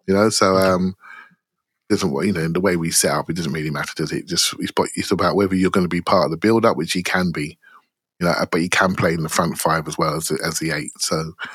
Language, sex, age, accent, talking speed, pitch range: English, male, 30-49, British, 290 wpm, 100-120 Hz